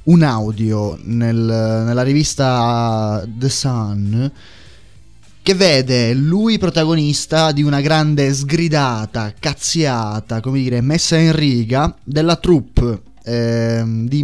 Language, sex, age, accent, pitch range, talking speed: Italian, male, 20-39, native, 120-145 Hz, 105 wpm